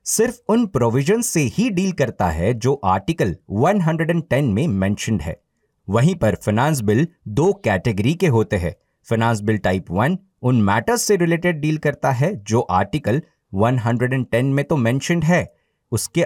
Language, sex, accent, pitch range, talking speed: Hindi, male, native, 105-150 Hz, 105 wpm